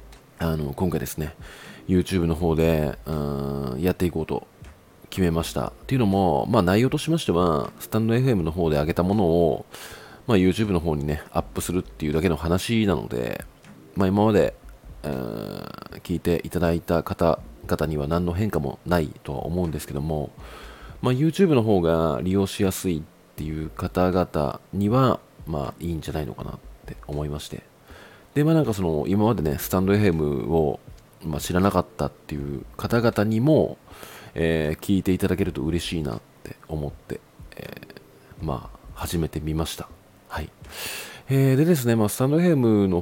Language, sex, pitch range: Japanese, male, 80-110 Hz